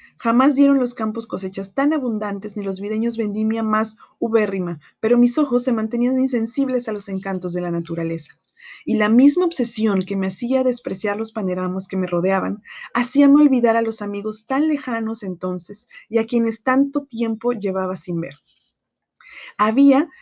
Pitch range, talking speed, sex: 190-240 Hz, 165 wpm, female